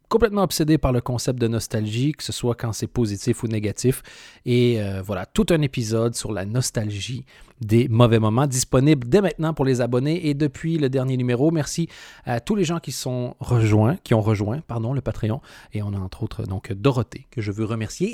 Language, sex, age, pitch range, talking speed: French, male, 30-49, 110-140 Hz, 210 wpm